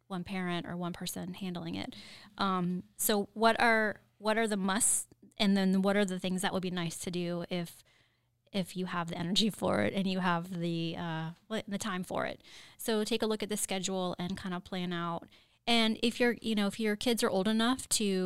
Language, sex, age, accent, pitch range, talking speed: English, female, 20-39, American, 185-220 Hz, 225 wpm